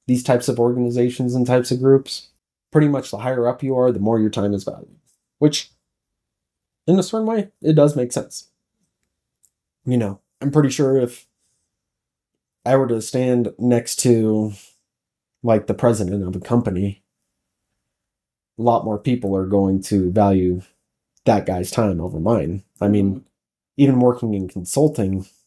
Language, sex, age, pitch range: English, male, 20-39, 95-125 Hz